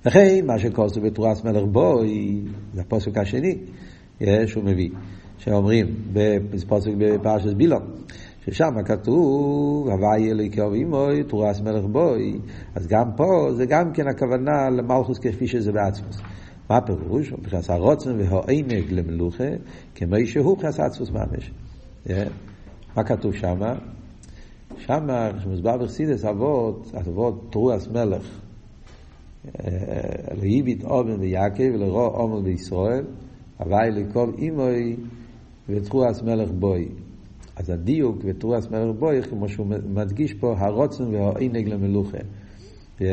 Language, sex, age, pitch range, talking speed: Hebrew, male, 50-69, 100-120 Hz, 115 wpm